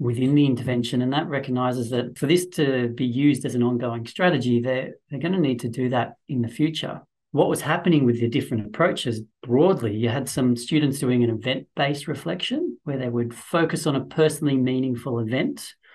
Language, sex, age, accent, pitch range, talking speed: English, male, 40-59, Australian, 120-150 Hz, 195 wpm